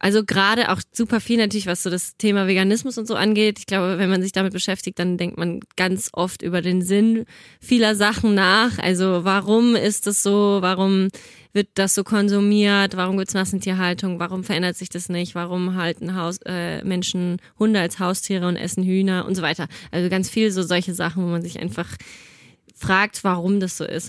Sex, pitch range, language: female, 180-210 Hz, German